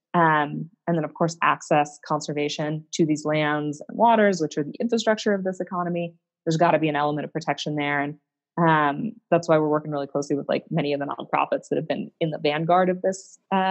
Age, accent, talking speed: 20-39, American, 220 wpm